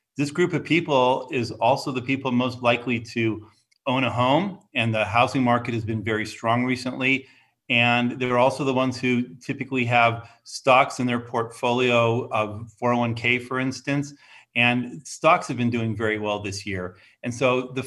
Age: 40-59